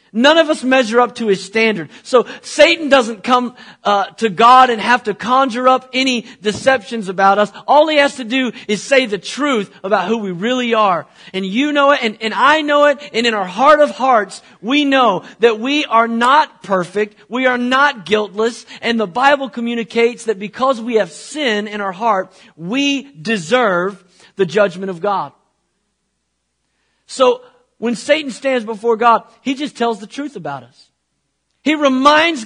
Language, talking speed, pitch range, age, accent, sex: English, 180 wpm, 210-265 Hz, 40-59, American, male